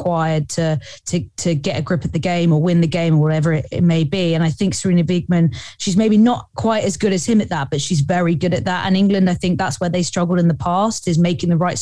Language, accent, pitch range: English, British, 165-190 Hz